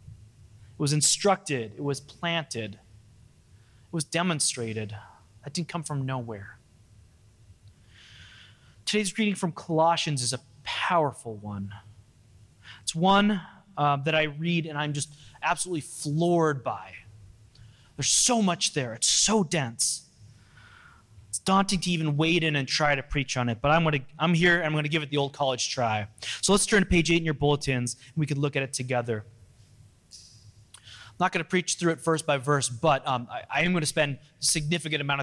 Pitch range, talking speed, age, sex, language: 110-155 Hz, 175 wpm, 20-39, male, English